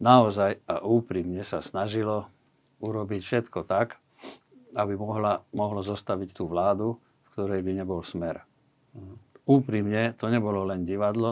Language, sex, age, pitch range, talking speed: Slovak, male, 60-79, 100-125 Hz, 125 wpm